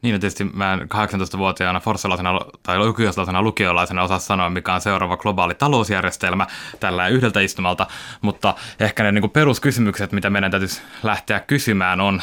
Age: 20-39